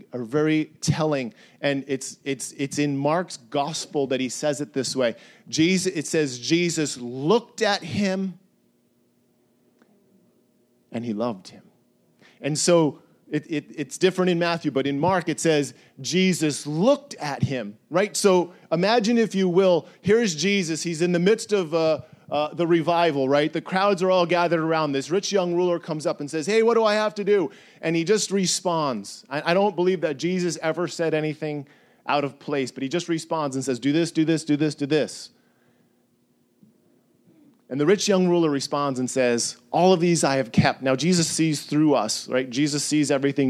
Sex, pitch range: male, 140-180 Hz